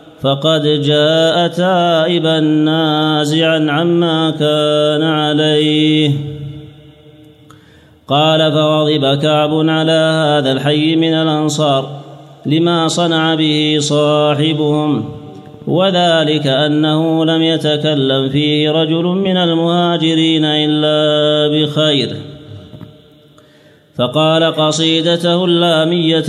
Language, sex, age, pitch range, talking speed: Arabic, male, 30-49, 150-160 Hz, 75 wpm